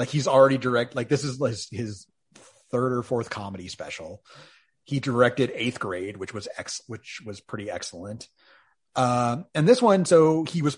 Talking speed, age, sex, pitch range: 175 wpm, 30-49, male, 110-140 Hz